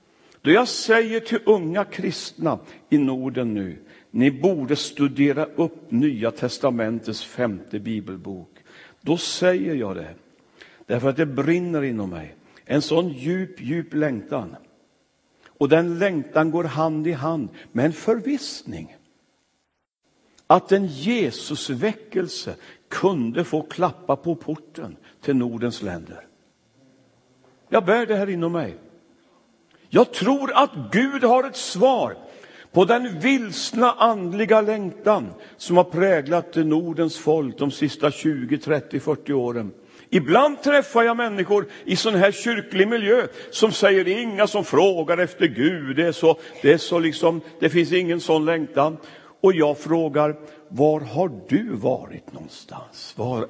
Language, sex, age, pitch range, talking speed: Swedish, male, 60-79, 140-195 Hz, 135 wpm